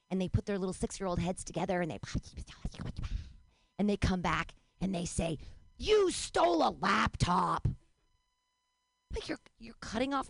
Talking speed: 155 wpm